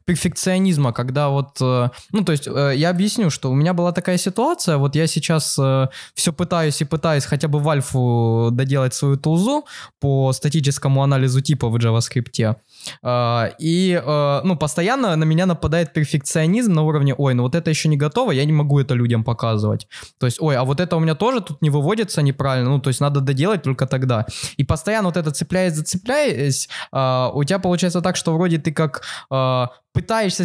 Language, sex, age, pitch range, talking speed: Russian, male, 20-39, 135-175 Hz, 180 wpm